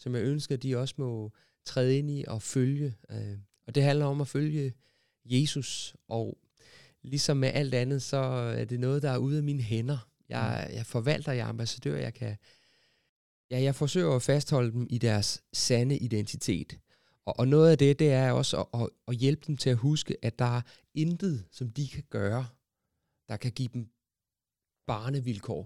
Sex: male